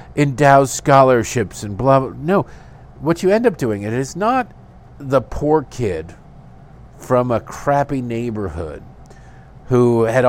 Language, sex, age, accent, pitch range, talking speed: English, male, 50-69, American, 105-135 Hz, 135 wpm